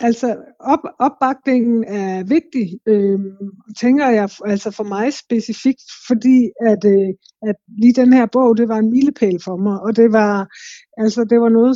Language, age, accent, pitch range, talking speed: Danish, 60-79, native, 205-245 Hz, 170 wpm